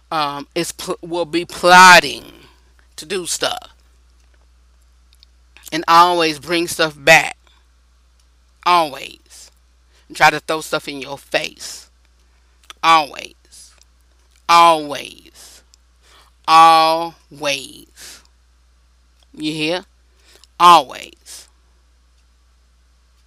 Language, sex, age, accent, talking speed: English, female, 30-49, American, 75 wpm